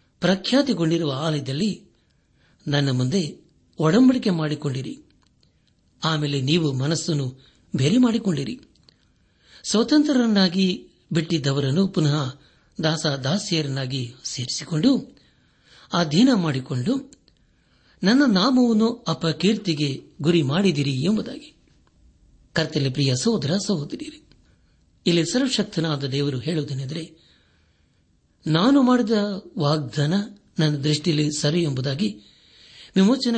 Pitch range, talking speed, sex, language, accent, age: 145-210 Hz, 70 wpm, male, Kannada, native, 60-79